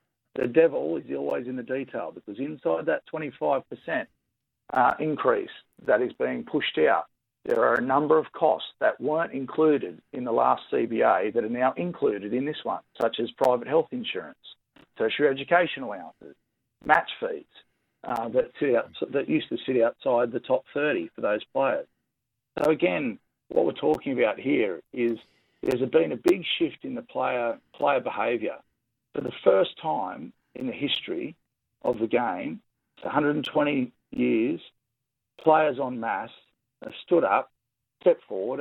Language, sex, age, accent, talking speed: English, male, 50-69, Australian, 160 wpm